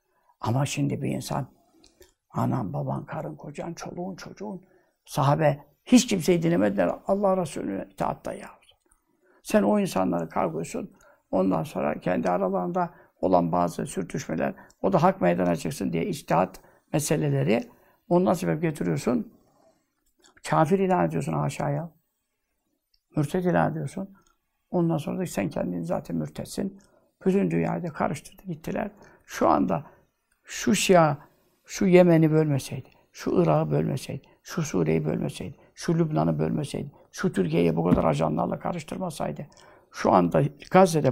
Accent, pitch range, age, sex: native, 140-190 Hz, 60-79, male